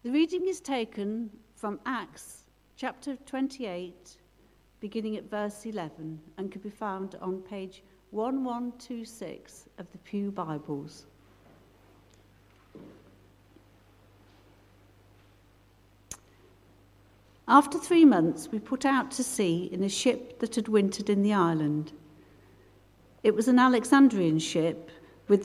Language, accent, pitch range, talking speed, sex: English, British, 145-225 Hz, 110 wpm, female